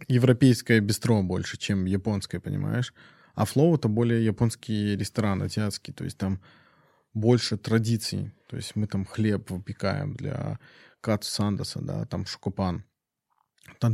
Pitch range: 105-120 Hz